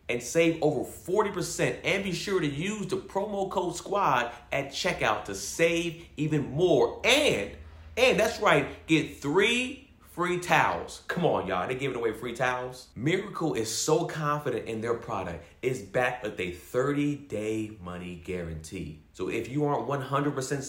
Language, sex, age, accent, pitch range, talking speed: English, male, 40-59, American, 115-165 Hz, 160 wpm